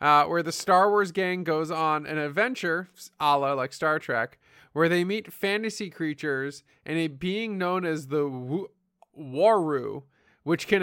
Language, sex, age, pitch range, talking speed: English, male, 20-39, 145-185 Hz, 165 wpm